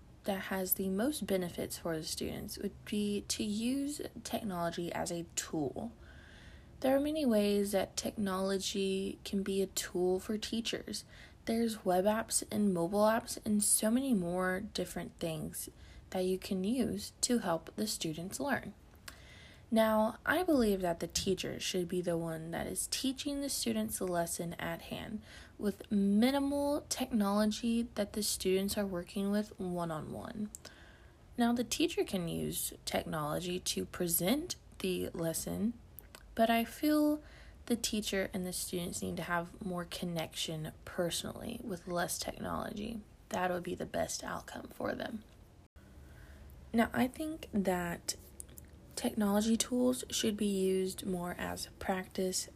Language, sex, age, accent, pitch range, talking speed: English, female, 20-39, American, 180-225 Hz, 145 wpm